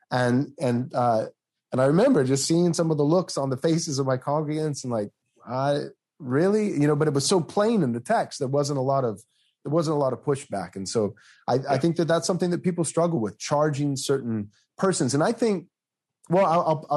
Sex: male